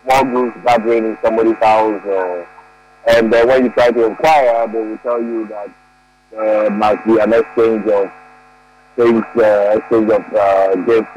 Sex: male